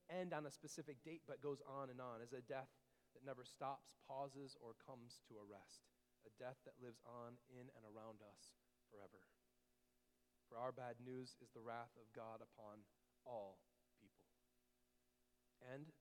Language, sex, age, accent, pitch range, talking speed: English, male, 40-59, American, 100-130 Hz, 170 wpm